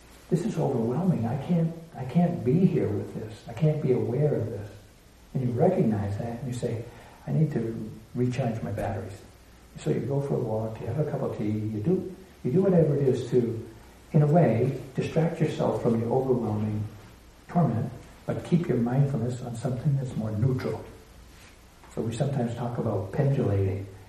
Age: 60-79